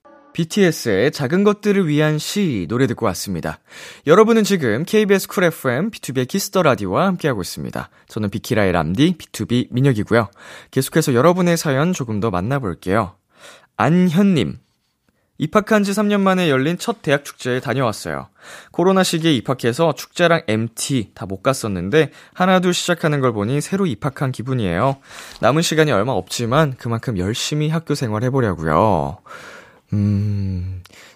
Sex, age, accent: male, 20-39, native